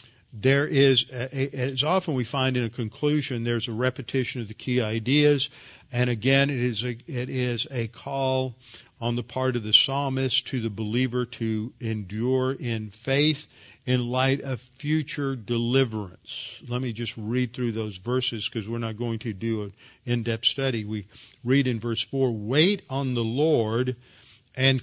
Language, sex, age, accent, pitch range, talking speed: English, male, 50-69, American, 115-135 Hz, 160 wpm